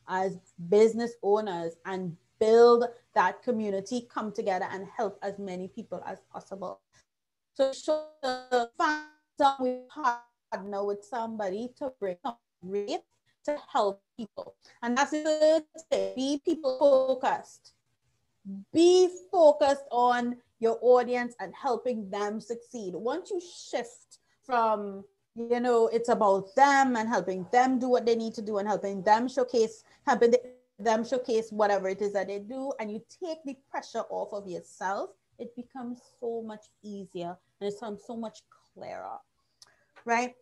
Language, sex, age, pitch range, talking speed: English, female, 30-49, 205-275 Hz, 145 wpm